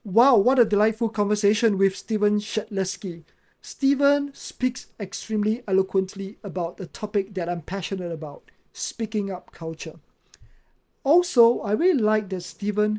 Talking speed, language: 130 wpm, English